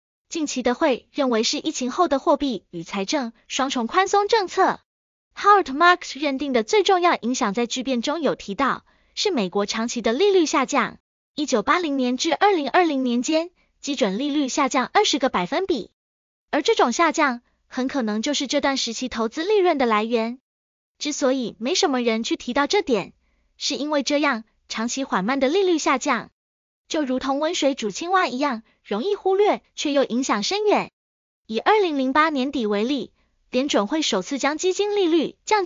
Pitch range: 250-340 Hz